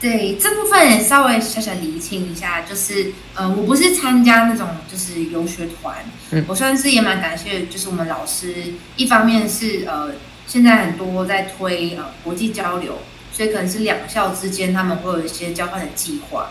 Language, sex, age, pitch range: Chinese, female, 20-39, 170-225 Hz